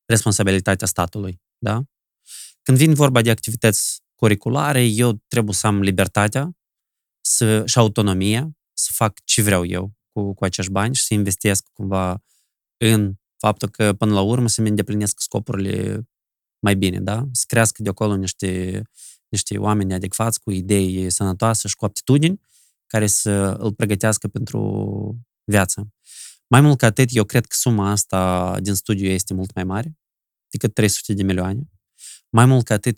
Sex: male